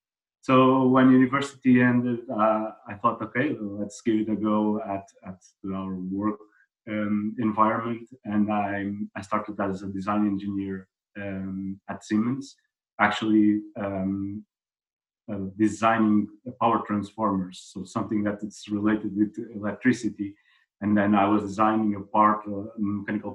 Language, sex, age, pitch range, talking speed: English, male, 30-49, 100-110 Hz, 135 wpm